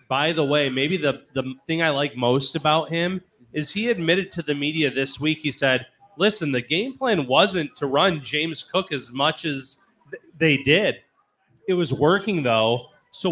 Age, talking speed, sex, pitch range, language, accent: 30-49, 185 wpm, male, 140-195 Hz, English, American